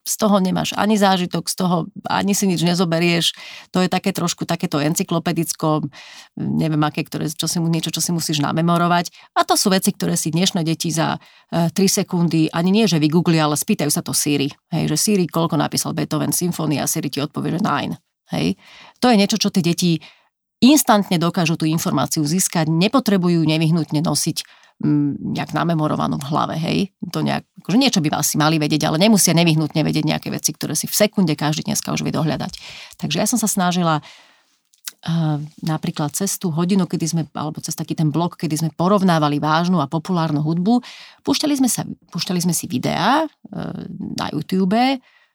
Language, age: Slovak, 30-49